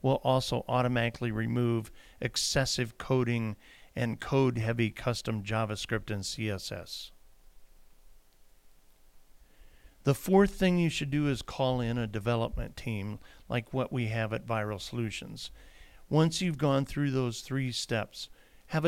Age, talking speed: 50-69, 125 wpm